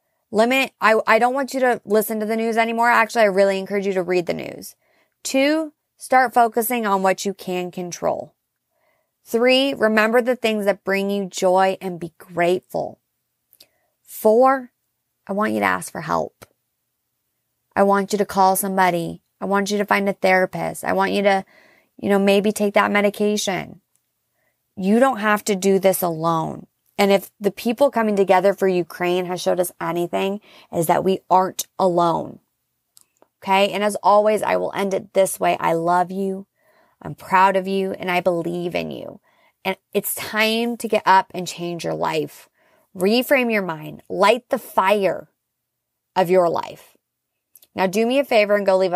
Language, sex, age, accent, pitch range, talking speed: English, female, 30-49, American, 185-225 Hz, 175 wpm